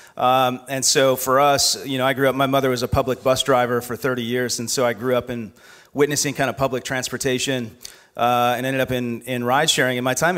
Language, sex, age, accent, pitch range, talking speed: English, male, 40-59, American, 120-135 Hz, 245 wpm